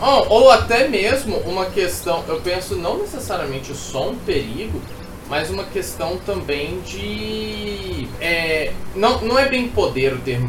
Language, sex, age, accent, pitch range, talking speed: Portuguese, male, 20-39, Brazilian, 110-140 Hz, 150 wpm